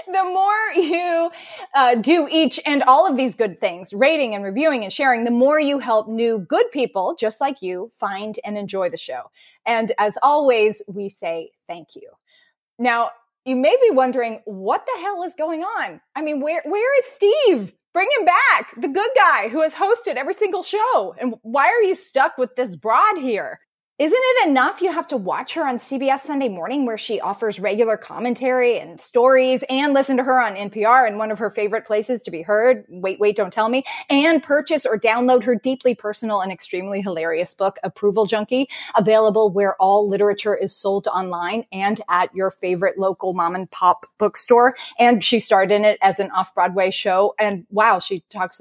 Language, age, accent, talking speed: English, 20-39, American, 195 wpm